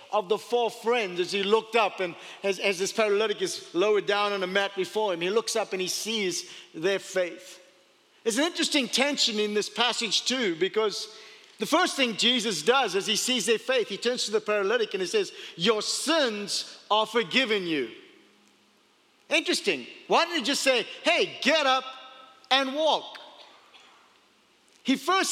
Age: 50-69